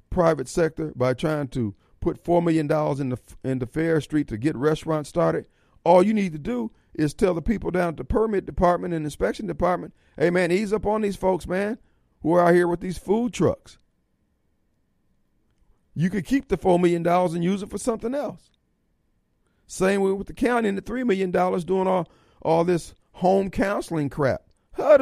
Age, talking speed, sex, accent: 40-59, 200 wpm, male, American